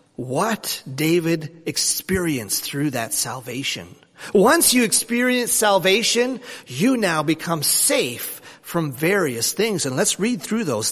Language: English